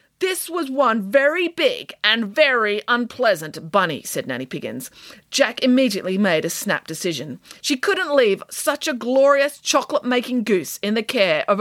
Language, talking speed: English, 155 wpm